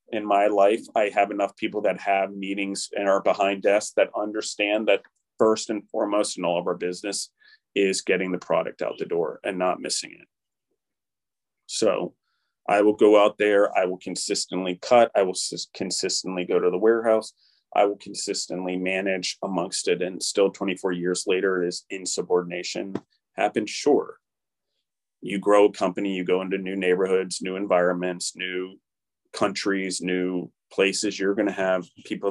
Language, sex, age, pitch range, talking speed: English, male, 30-49, 95-110 Hz, 165 wpm